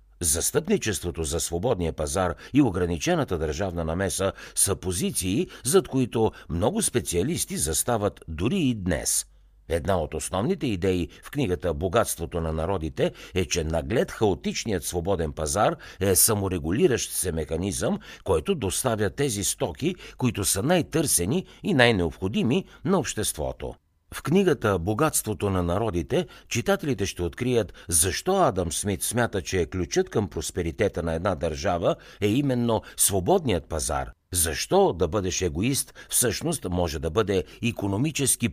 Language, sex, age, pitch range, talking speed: Bulgarian, male, 60-79, 85-120 Hz, 125 wpm